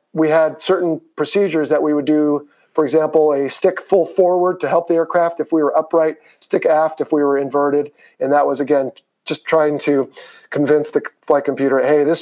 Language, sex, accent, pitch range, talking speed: English, male, American, 145-170 Hz, 200 wpm